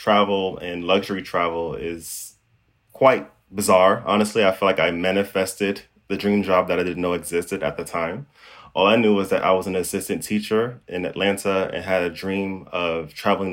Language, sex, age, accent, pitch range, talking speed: English, male, 20-39, American, 90-105 Hz, 185 wpm